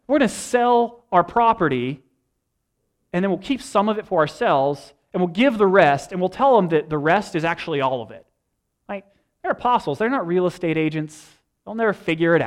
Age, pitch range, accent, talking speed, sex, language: 30-49, 140-185 Hz, American, 205 wpm, male, English